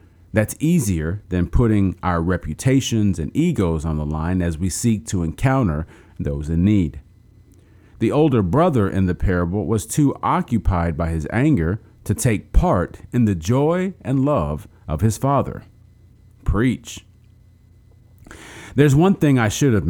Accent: American